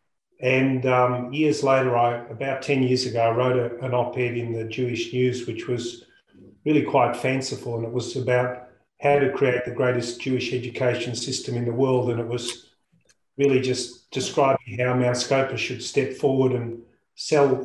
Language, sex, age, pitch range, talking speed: English, male, 40-59, 120-135 Hz, 170 wpm